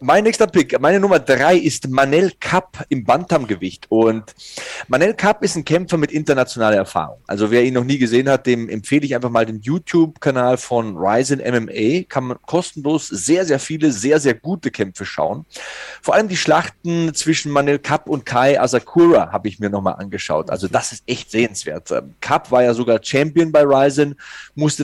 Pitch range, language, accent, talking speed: 120-160 Hz, German, German, 185 wpm